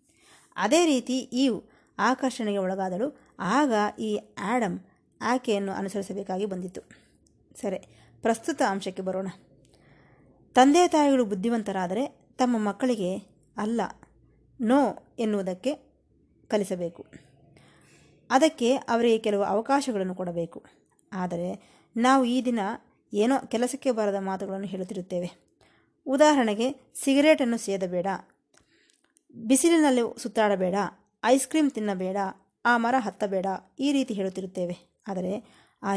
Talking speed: 90 wpm